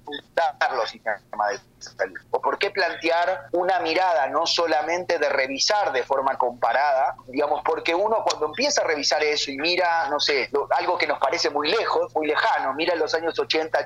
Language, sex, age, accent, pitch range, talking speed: Spanish, male, 30-49, Argentinian, 145-180 Hz, 165 wpm